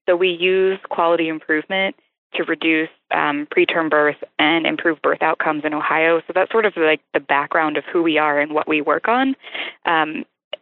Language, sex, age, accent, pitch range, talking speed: English, female, 20-39, American, 155-180 Hz, 185 wpm